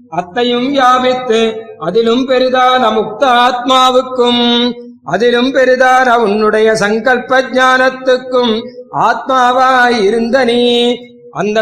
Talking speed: 65 wpm